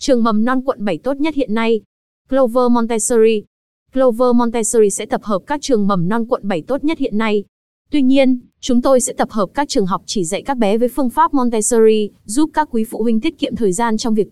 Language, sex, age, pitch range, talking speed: Vietnamese, female, 20-39, 205-255 Hz, 230 wpm